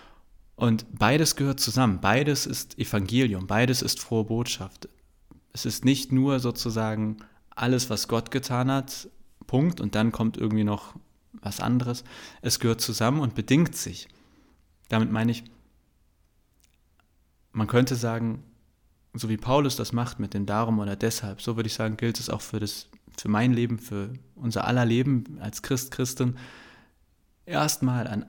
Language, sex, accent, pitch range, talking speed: German, male, German, 105-125 Hz, 150 wpm